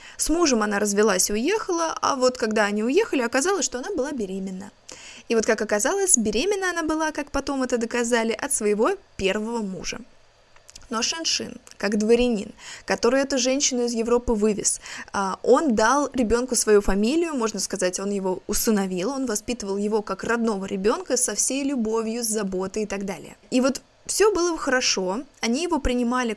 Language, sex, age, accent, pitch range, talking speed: Russian, female, 20-39, native, 205-265 Hz, 165 wpm